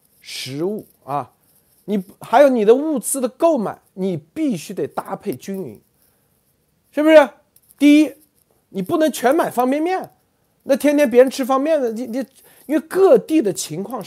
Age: 50-69